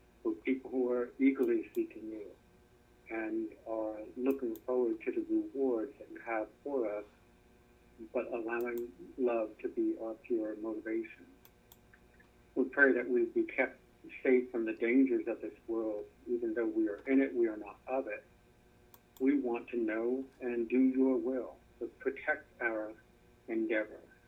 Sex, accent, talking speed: male, American, 155 wpm